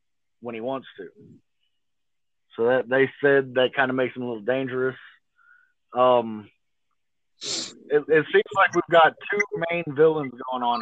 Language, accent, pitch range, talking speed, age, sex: English, American, 125-150 Hz, 155 wpm, 30-49, male